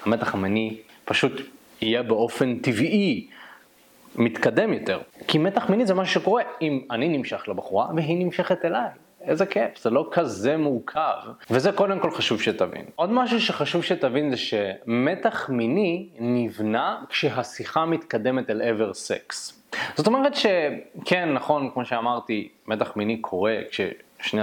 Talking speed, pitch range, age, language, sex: 140 wpm, 115-160 Hz, 20-39, Hebrew, male